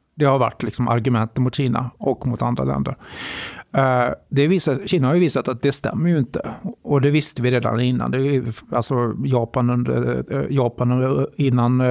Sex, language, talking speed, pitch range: male, Swedish, 175 wpm, 125-155 Hz